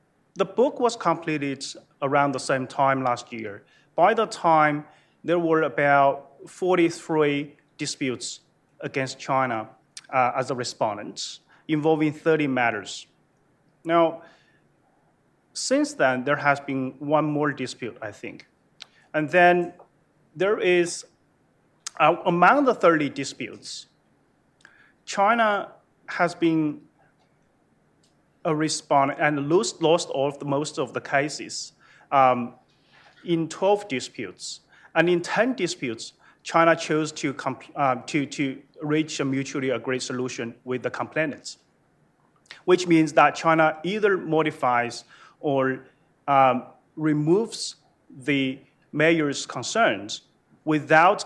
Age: 30-49